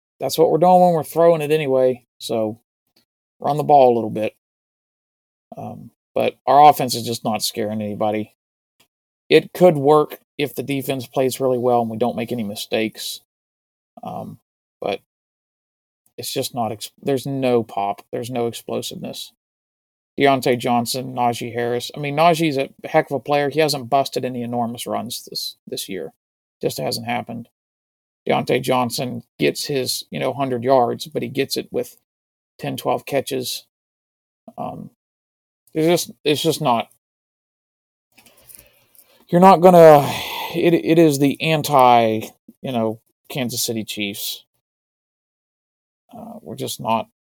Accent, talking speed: American, 140 wpm